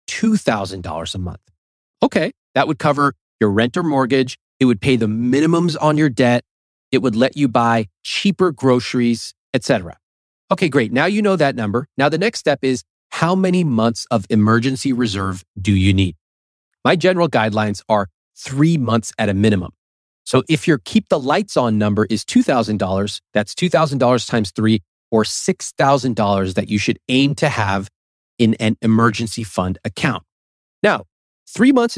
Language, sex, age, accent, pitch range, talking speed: English, male, 30-49, American, 105-145 Hz, 165 wpm